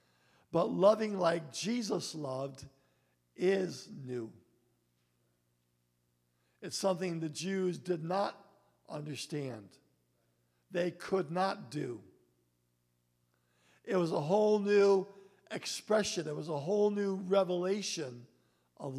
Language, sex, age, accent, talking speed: English, male, 50-69, American, 100 wpm